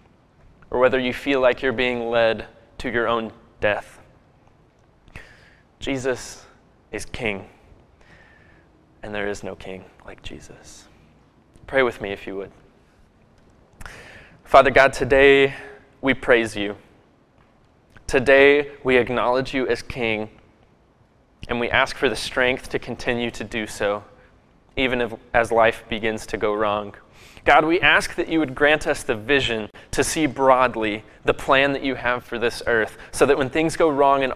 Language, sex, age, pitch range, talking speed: English, male, 20-39, 110-130 Hz, 150 wpm